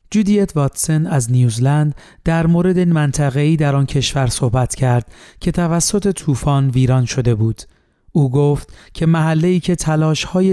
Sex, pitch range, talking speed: male, 130-160 Hz, 150 wpm